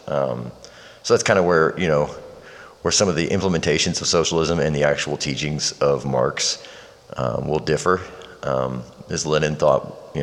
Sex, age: male, 30-49